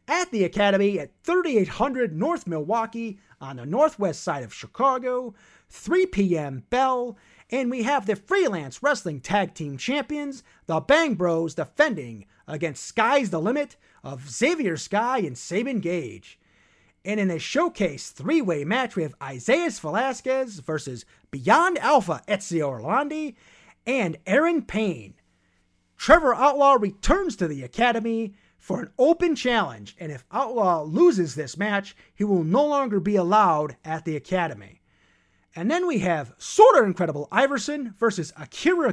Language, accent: English, American